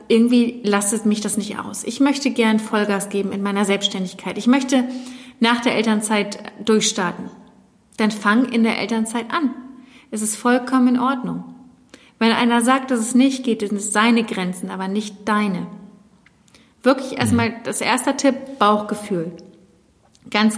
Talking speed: 150 wpm